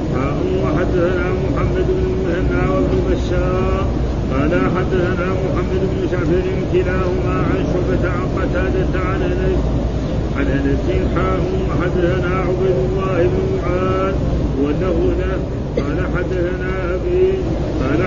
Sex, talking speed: male, 90 wpm